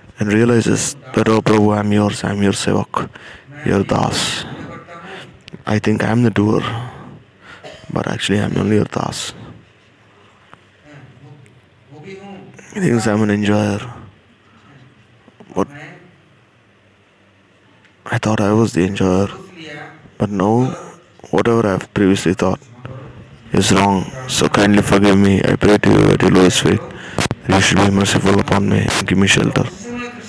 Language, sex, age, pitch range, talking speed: English, male, 20-39, 100-140 Hz, 135 wpm